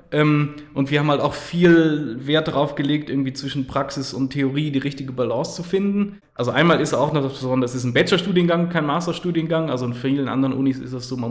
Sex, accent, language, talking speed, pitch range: male, German, German, 210 wpm, 130-155 Hz